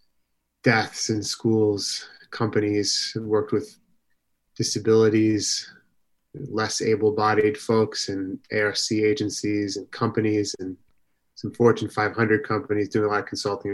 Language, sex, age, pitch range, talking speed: English, male, 20-39, 100-120 Hz, 115 wpm